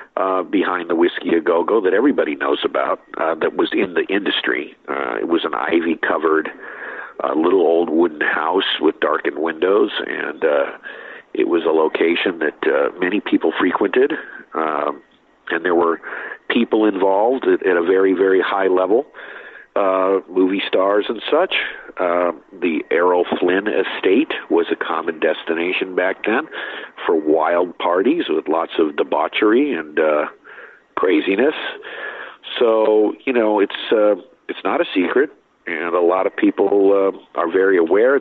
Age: 50-69